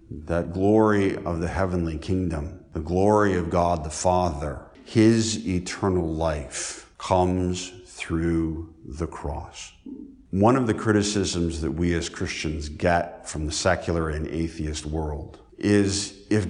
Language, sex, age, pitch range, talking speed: English, male, 50-69, 80-95 Hz, 130 wpm